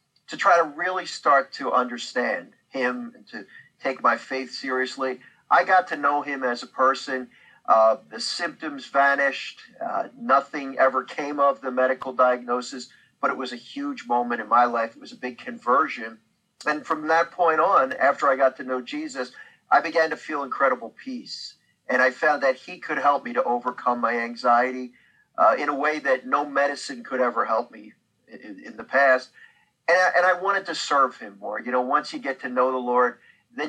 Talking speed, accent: 195 wpm, American